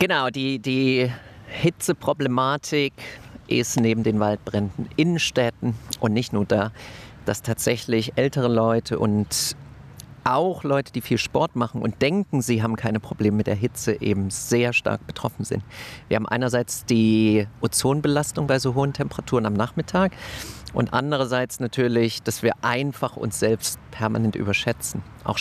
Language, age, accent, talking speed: German, 40-59, German, 140 wpm